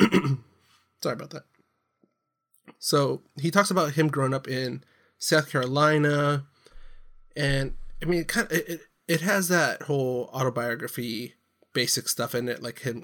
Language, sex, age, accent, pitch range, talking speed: English, male, 20-39, American, 125-160 Hz, 145 wpm